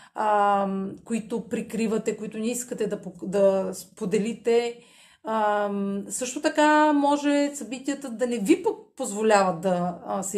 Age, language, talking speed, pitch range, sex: 30-49, Bulgarian, 115 wpm, 200-255 Hz, female